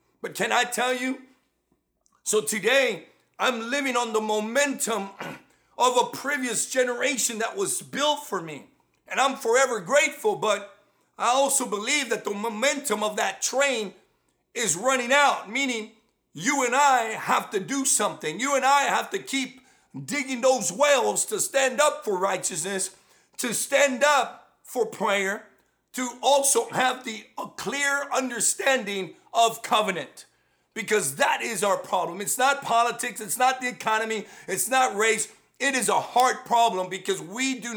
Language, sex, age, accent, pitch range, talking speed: English, male, 50-69, American, 205-270 Hz, 155 wpm